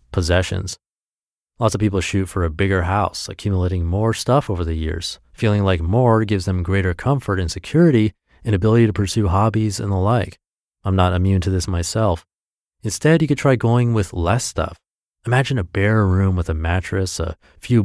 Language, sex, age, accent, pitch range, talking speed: English, male, 30-49, American, 90-120 Hz, 185 wpm